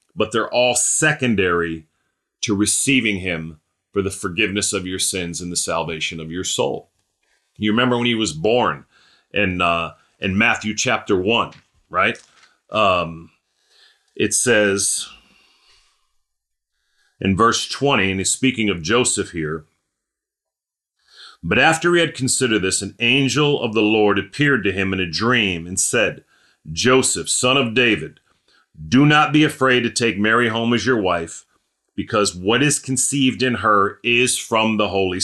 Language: English